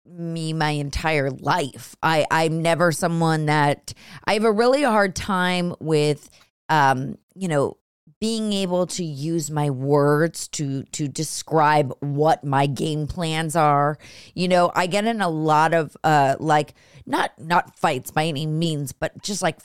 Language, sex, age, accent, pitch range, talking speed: English, female, 30-49, American, 155-205 Hz, 160 wpm